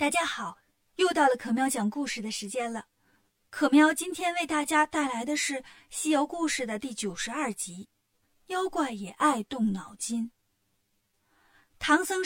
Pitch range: 215-310 Hz